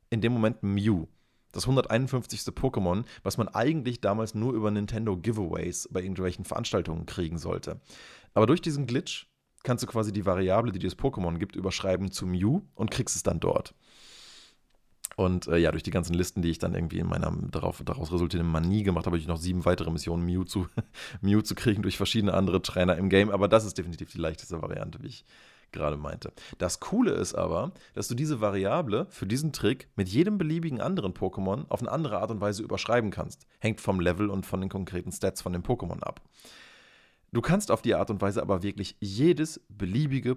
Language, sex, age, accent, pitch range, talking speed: German, male, 30-49, German, 90-120 Hz, 200 wpm